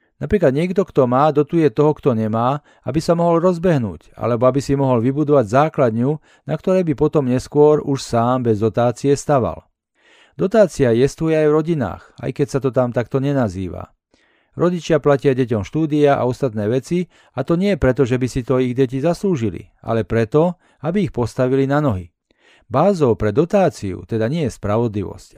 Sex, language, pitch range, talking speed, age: male, Slovak, 115-150 Hz, 170 wpm, 40-59